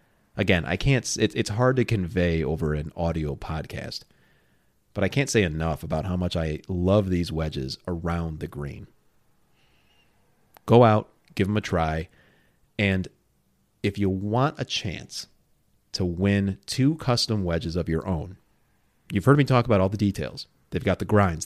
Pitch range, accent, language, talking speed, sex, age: 90-120 Hz, American, English, 165 wpm, male, 30-49